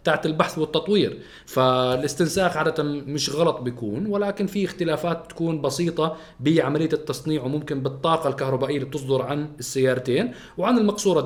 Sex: male